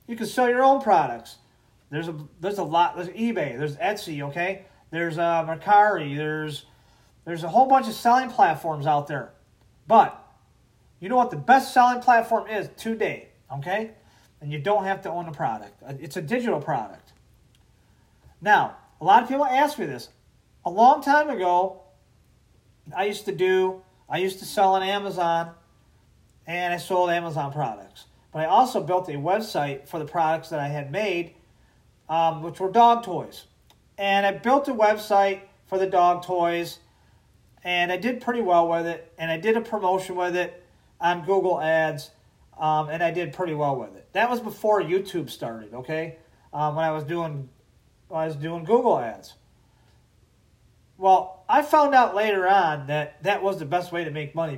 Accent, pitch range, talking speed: American, 155-205 Hz, 175 wpm